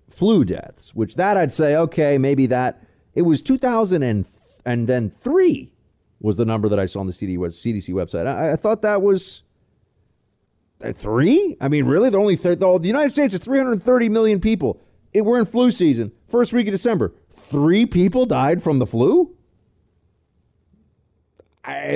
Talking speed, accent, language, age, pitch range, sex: 175 wpm, American, English, 30-49, 120-190 Hz, male